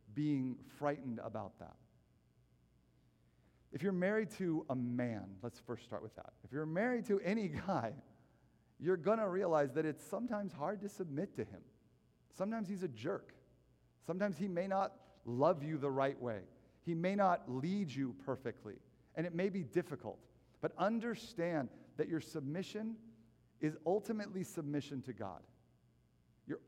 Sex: male